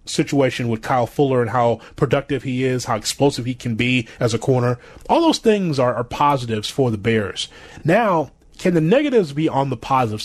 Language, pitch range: English, 135-175 Hz